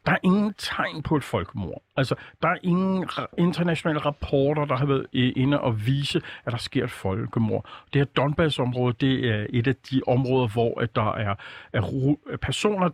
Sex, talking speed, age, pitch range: male, 170 wpm, 50-69, 120-155 Hz